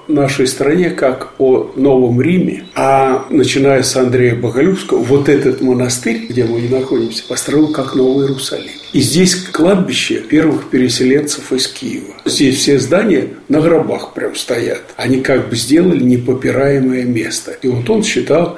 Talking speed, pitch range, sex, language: 145 wpm, 125-170 Hz, male, Russian